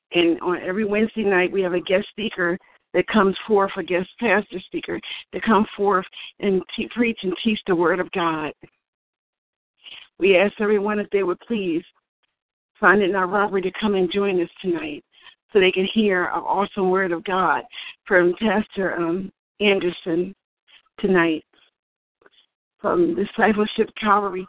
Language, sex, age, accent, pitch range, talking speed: English, female, 50-69, American, 185-215 Hz, 155 wpm